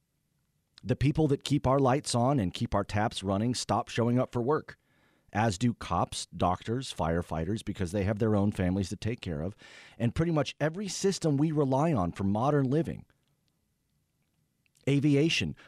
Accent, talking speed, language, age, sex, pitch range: American, 170 wpm, English, 40-59, male, 100-145 Hz